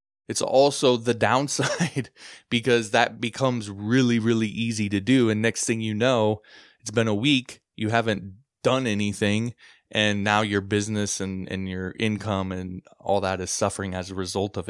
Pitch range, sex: 100-125 Hz, male